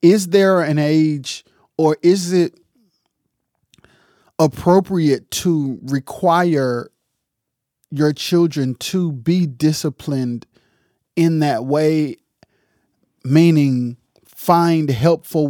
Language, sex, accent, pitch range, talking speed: English, male, American, 125-155 Hz, 80 wpm